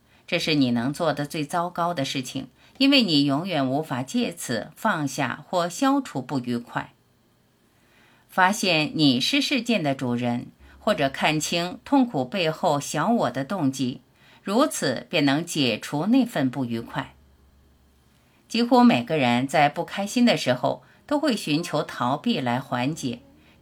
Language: Chinese